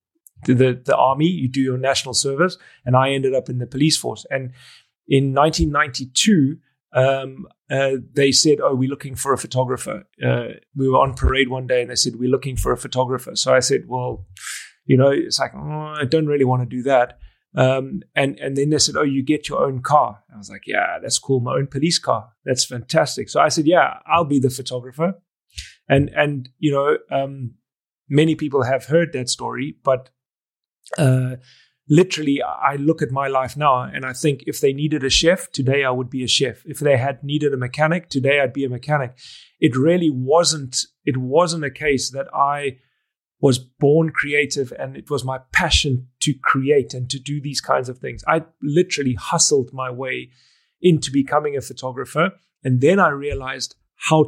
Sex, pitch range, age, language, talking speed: male, 130-150 Hz, 30-49, English, 195 wpm